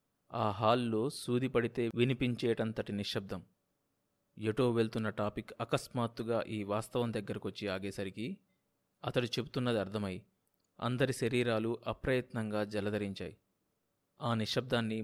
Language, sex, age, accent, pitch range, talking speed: Telugu, male, 30-49, native, 110-140 Hz, 90 wpm